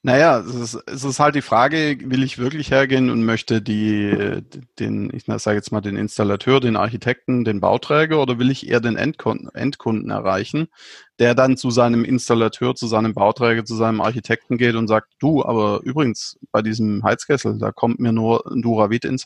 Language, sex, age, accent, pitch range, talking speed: German, male, 30-49, German, 110-125 Hz, 190 wpm